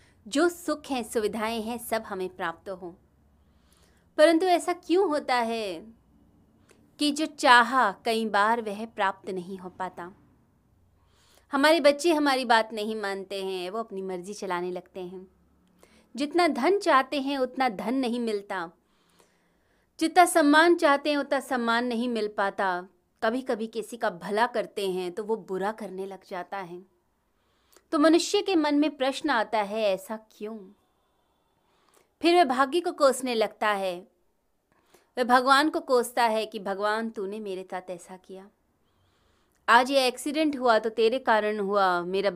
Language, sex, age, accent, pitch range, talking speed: Hindi, female, 30-49, native, 190-265 Hz, 150 wpm